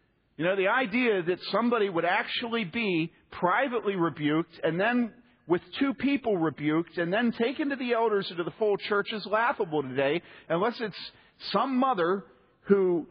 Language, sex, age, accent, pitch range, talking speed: English, male, 50-69, American, 180-275 Hz, 165 wpm